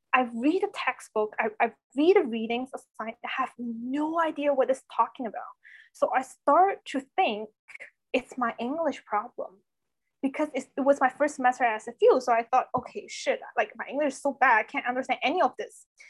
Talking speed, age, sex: 200 wpm, 20-39, female